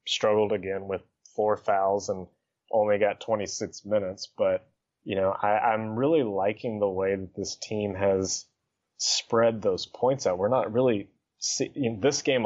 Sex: male